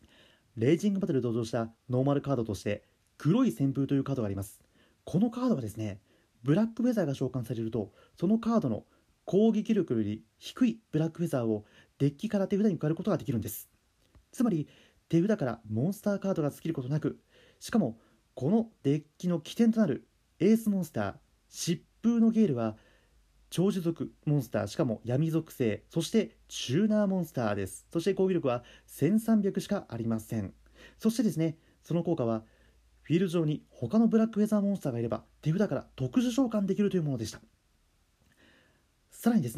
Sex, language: male, Japanese